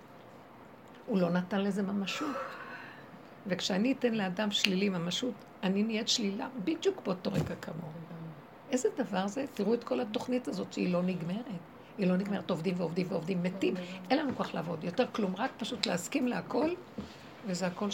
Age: 60-79